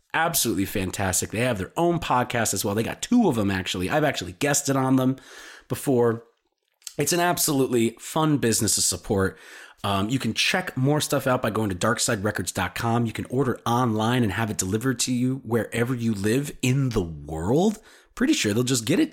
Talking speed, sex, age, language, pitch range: 190 wpm, male, 30-49, English, 105-140 Hz